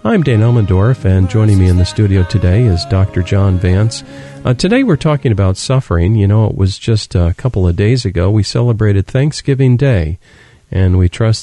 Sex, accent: male, American